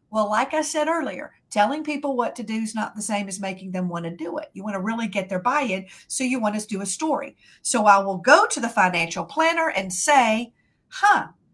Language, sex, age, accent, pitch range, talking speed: English, female, 50-69, American, 190-265 Hz, 245 wpm